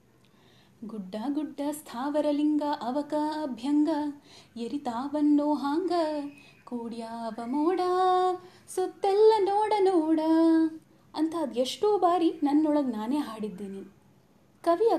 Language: Kannada